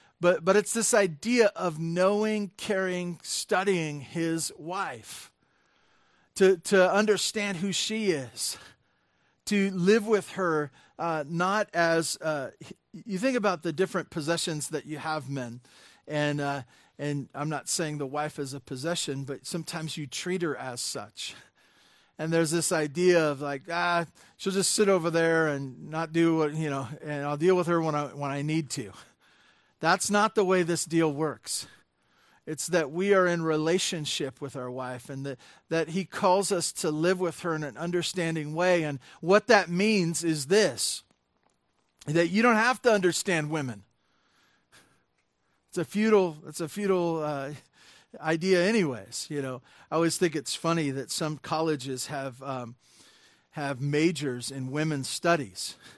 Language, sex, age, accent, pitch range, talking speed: English, male, 40-59, American, 145-185 Hz, 160 wpm